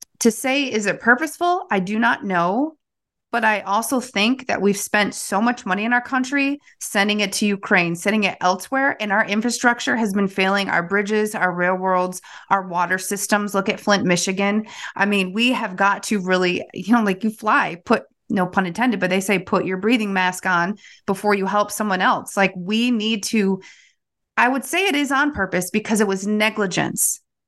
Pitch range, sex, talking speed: 190-235 Hz, female, 195 wpm